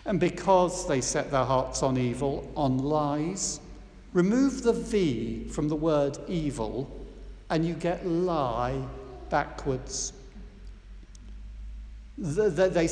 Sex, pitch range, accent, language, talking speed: male, 130-195 Hz, British, English, 105 wpm